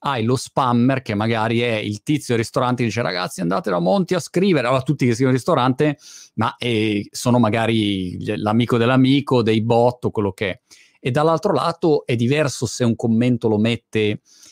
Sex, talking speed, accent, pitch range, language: male, 195 wpm, native, 115-140 Hz, Italian